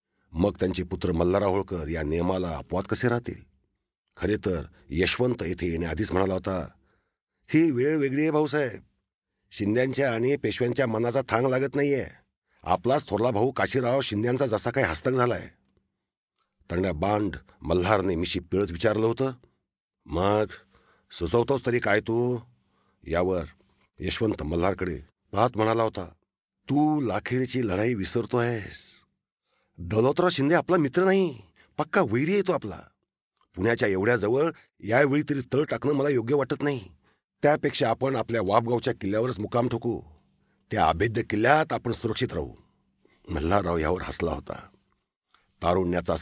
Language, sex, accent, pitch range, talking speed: Marathi, male, native, 90-120 Hz, 125 wpm